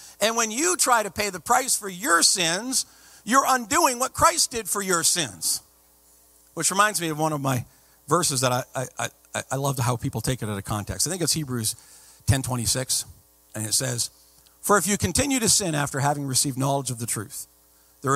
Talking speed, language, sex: 210 wpm, English, male